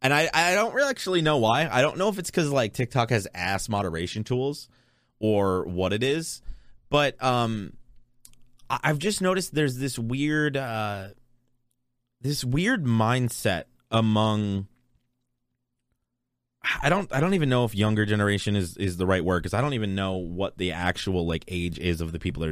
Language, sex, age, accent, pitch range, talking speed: English, male, 20-39, American, 95-130 Hz, 175 wpm